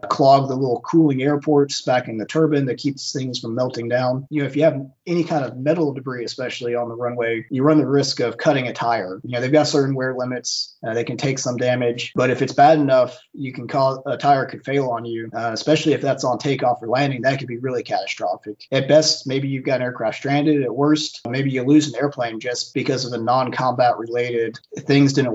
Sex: male